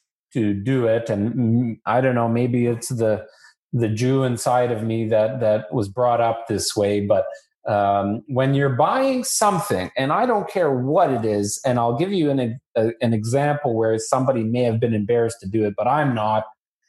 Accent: American